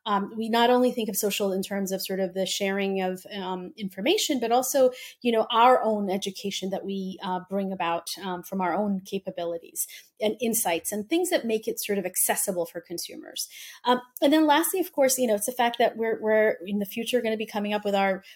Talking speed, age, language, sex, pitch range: 230 wpm, 30-49, English, female, 195-245 Hz